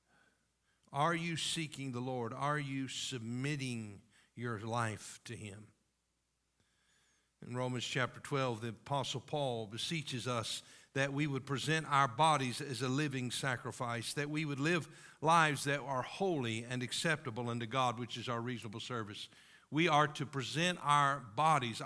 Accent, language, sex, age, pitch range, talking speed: American, English, male, 50-69, 125-160 Hz, 150 wpm